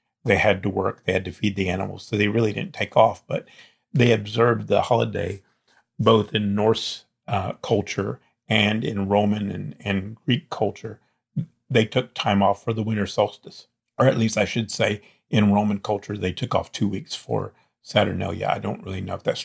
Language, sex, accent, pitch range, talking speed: English, male, American, 95-110 Hz, 195 wpm